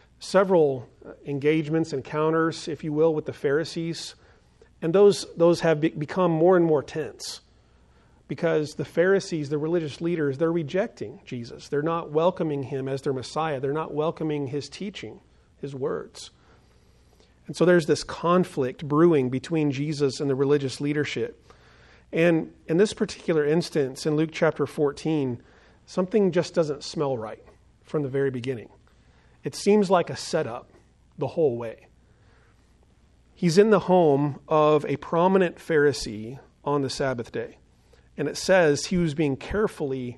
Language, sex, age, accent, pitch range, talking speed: English, male, 40-59, American, 140-170 Hz, 145 wpm